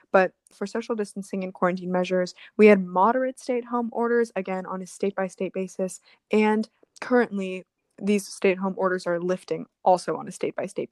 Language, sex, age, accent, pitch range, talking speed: English, female, 20-39, American, 185-230 Hz, 170 wpm